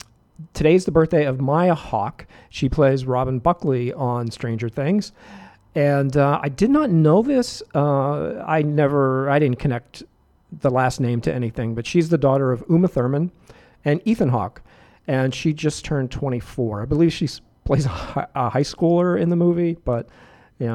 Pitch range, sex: 120-160 Hz, male